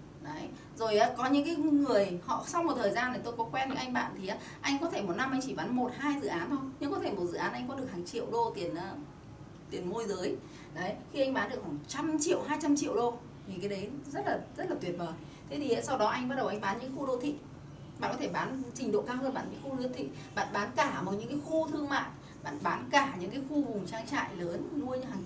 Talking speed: 275 wpm